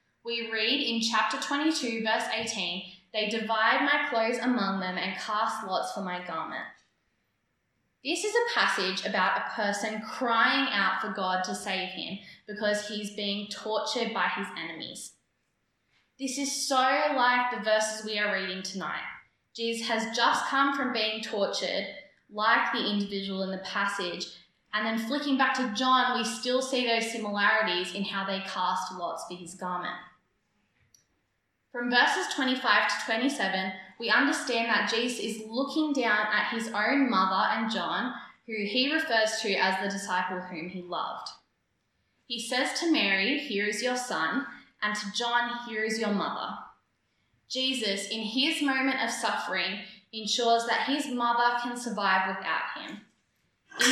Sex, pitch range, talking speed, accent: female, 195-245 Hz, 155 wpm, Australian